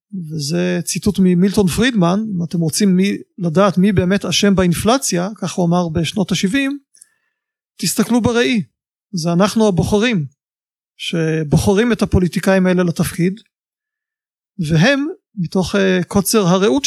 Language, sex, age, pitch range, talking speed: Hebrew, male, 30-49, 175-220 Hz, 115 wpm